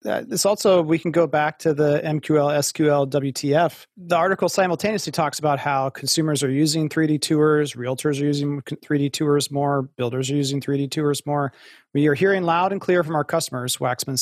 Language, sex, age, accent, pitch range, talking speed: English, male, 30-49, American, 135-160 Hz, 190 wpm